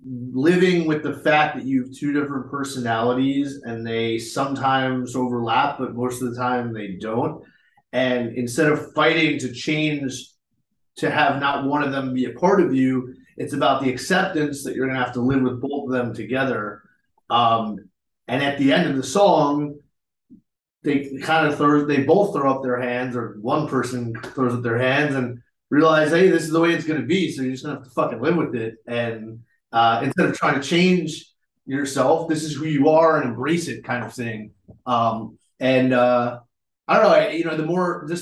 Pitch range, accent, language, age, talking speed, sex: 125-150 Hz, American, English, 30-49, 205 wpm, male